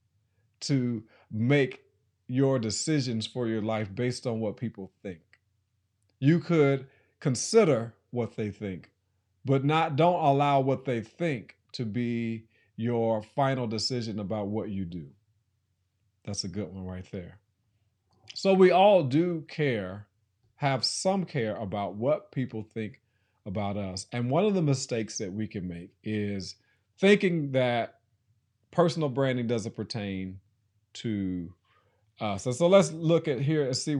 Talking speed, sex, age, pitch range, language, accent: 140 wpm, male, 40-59, 105-145 Hz, English, American